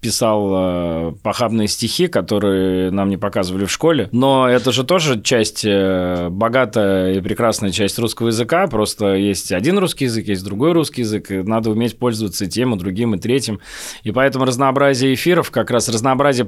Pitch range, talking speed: 100-130 Hz, 170 wpm